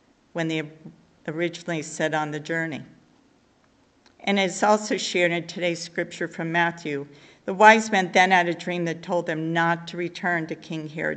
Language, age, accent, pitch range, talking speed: English, 50-69, American, 165-185 Hz, 170 wpm